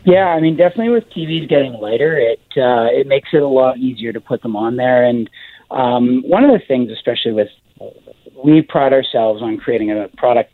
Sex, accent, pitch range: male, American, 110-155 Hz